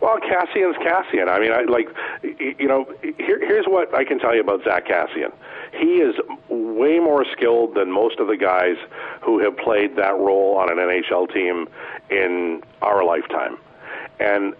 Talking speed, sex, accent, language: 175 wpm, male, American, English